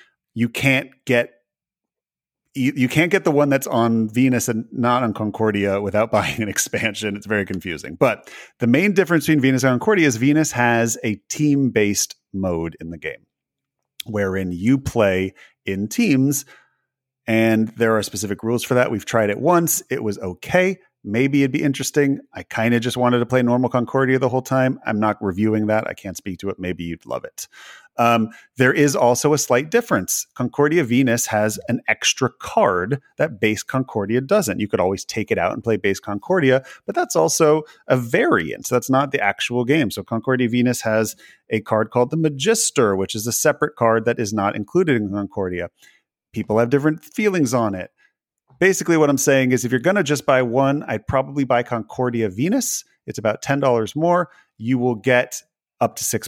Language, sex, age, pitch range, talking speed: English, male, 30-49, 110-140 Hz, 190 wpm